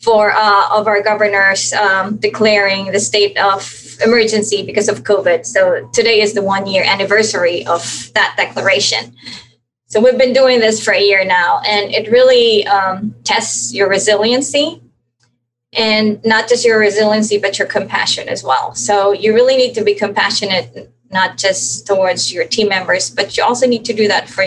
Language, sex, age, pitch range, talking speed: English, female, 20-39, 185-220 Hz, 175 wpm